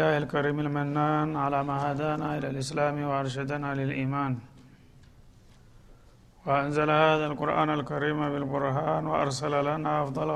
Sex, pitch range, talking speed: male, 145-155 Hz, 105 wpm